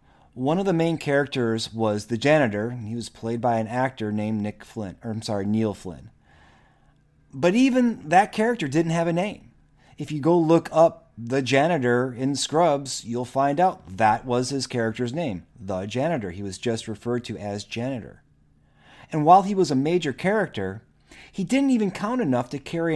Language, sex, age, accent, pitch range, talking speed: English, male, 30-49, American, 115-150 Hz, 185 wpm